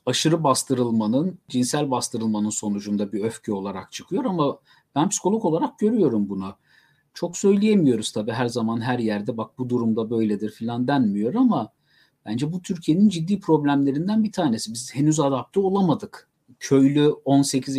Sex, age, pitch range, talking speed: male, 50-69, 115-165 Hz, 140 wpm